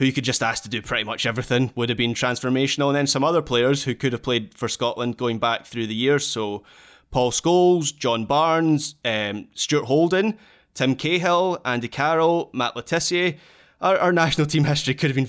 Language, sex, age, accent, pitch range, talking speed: English, male, 20-39, British, 115-135 Hz, 205 wpm